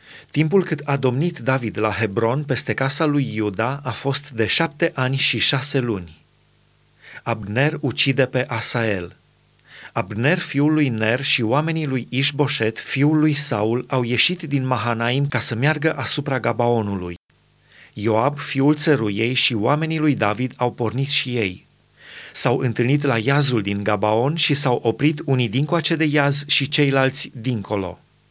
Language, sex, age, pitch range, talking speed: Romanian, male, 30-49, 115-145 Hz, 150 wpm